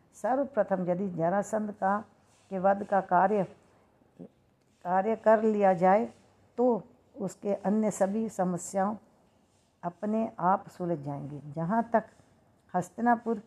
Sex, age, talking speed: female, 50-69, 105 wpm